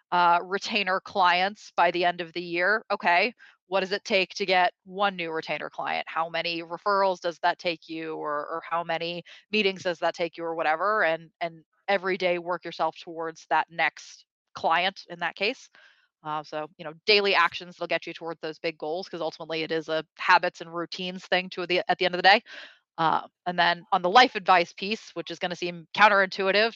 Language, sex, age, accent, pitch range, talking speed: English, female, 30-49, American, 160-185 Hz, 215 wpm